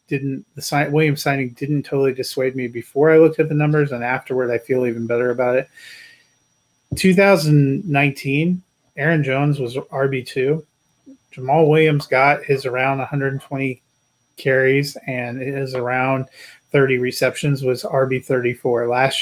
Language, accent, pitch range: English, American, 125-140 Hz